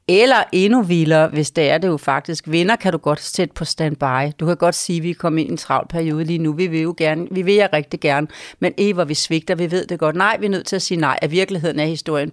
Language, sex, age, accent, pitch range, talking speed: Danish, female, 40-59, native, 160-195 Hz, 290 wpm